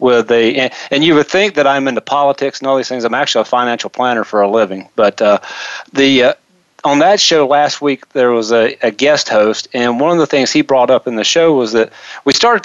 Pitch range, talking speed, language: 120-150 Hz, 245 wpm, English